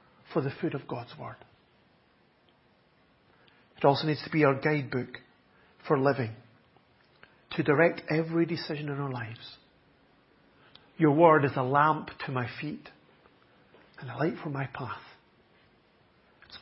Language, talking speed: English, 135 wpm